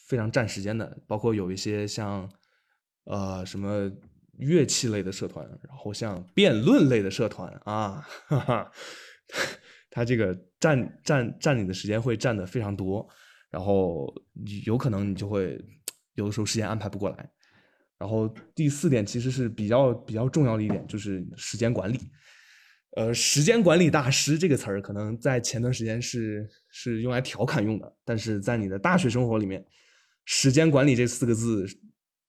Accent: native